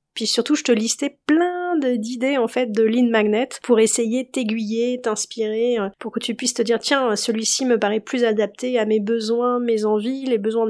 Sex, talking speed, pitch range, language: female, 200 wpm, 215-250 Hz, French